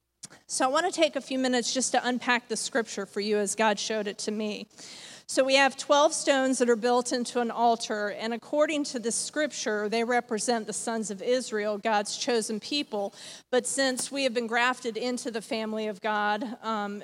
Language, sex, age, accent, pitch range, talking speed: English, female, 40-59, American, 215-250 Hz, 205 wpm